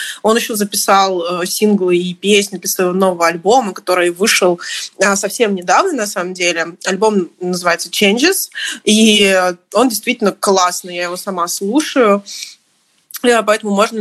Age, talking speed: 20-39, 130 wpm